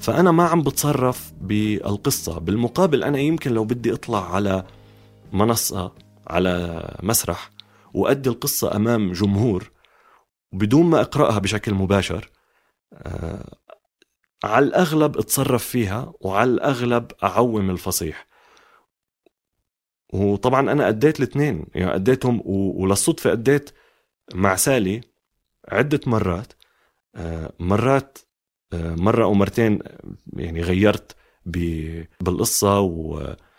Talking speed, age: 95 wpm, 30-49